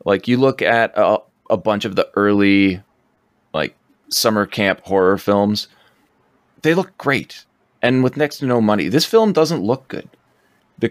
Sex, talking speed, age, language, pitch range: male, 165 wpm, 30-49, English, 95-115 Hz